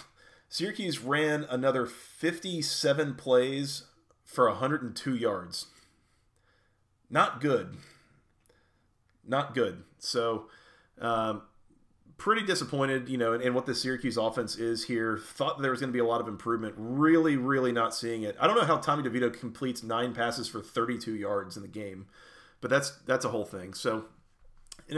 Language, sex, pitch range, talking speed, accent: English, male, 115-145 Hz, 155 wpm, American